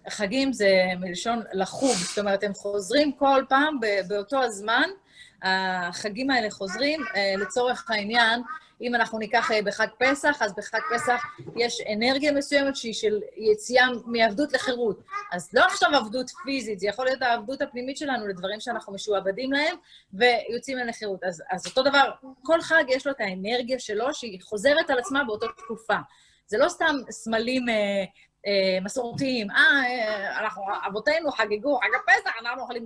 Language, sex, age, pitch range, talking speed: Hebrew, female, 30-49, 205-270 Hz, 150 wpm